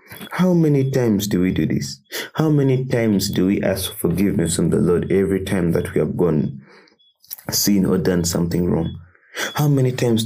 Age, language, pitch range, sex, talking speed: 30-49, English, 95-110 Hz, male, 185 wpm